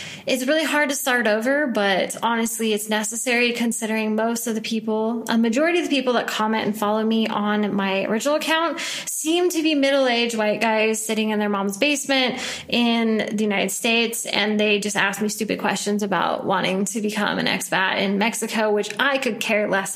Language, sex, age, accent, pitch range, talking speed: English, female, 20-39, American, 215-260 Hz, 190 wpm